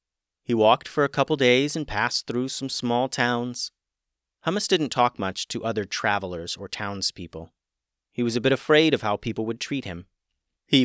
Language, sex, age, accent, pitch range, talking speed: English, male, 30-49, American, 100-135 Hz, 185 wpm